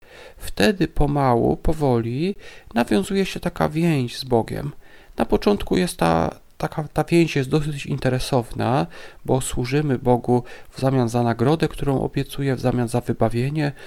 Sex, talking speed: male, 130 wpm